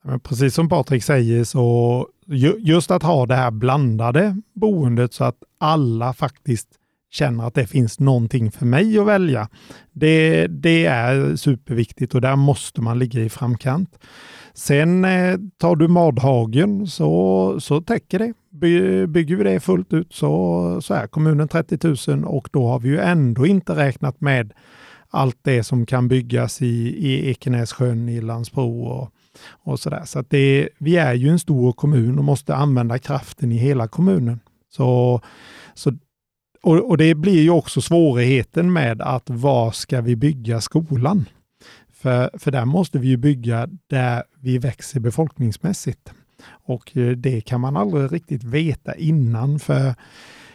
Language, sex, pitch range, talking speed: Swedish, male, 120-160 Hz, 155 wpm